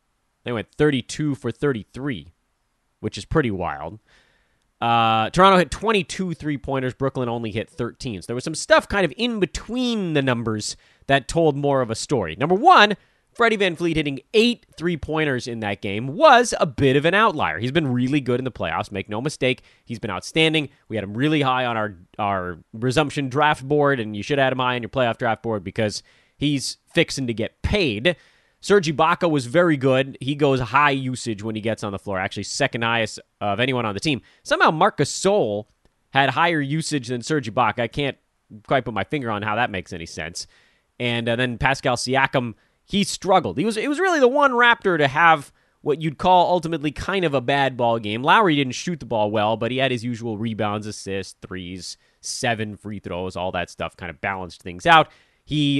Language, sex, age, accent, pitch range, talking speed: English, male, 30-49, American, 110-150 Hz, 205 wpm